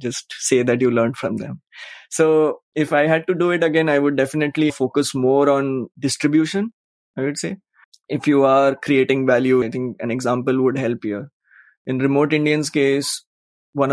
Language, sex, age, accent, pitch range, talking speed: English, male, 20-39, Indian, 125-145 Hz, 180 wpm